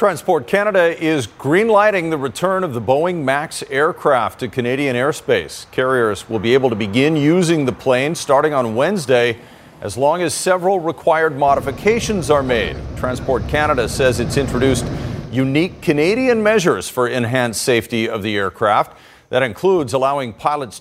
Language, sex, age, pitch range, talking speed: English, male, 40-59, 115-160 Hz, 155 wpm